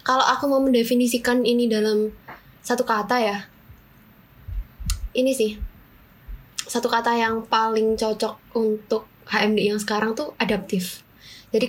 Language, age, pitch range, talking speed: Indonesian, 10-29, 215-245 Hz, 120 wpm